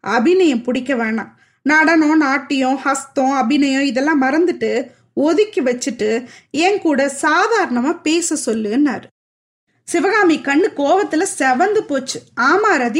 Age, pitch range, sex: 20-39, 270-355 Hz, female